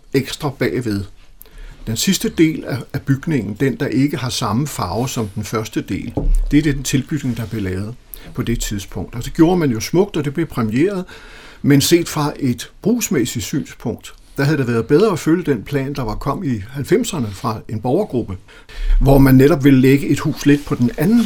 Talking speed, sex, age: 200 wpm, male, 60-79